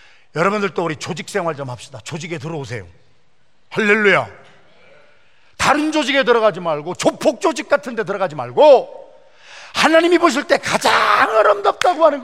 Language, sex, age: Korean, male, 40-59